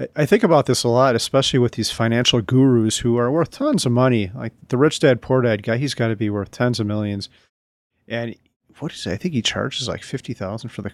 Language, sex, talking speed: English, male, 240 wpm